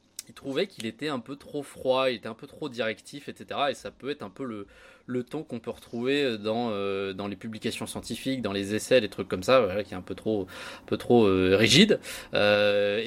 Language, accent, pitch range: French, French, 105-135 Hz